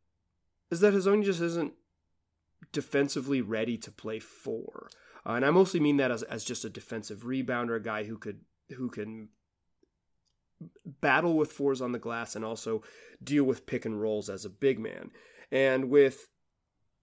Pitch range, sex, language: 115-155 Hz, male, English